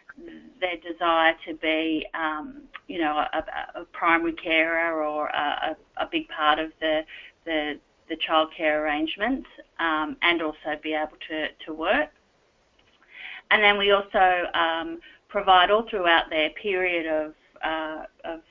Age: 30-49